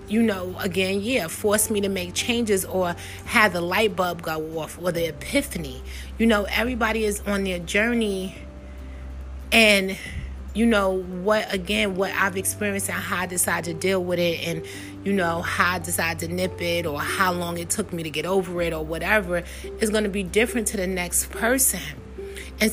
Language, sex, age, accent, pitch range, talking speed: English, female, 30-49, American, 165-210 Hz, 195 wpm